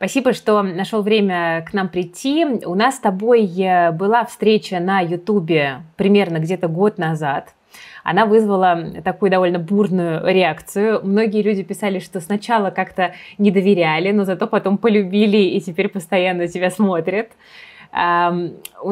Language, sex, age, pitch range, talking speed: Russian, female, 20-39, 175-215 Hz, 135 wpm